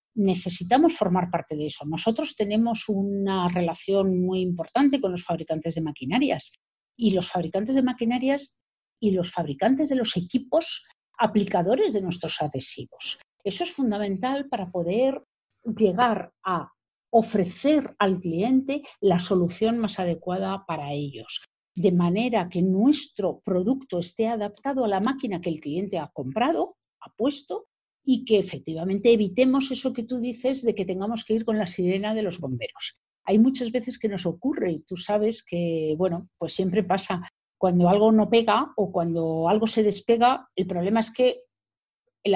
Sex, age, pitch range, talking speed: female, 50-69, 180-245 Hz, 155 wpm